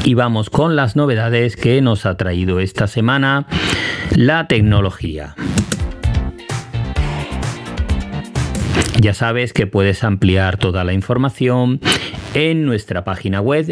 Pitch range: 100-130 Hz